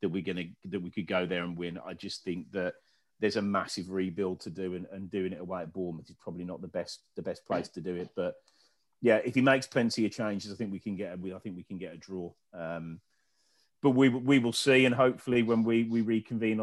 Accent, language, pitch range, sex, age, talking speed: British, English, 100-125 Hz, male, 30-49, 255 wpm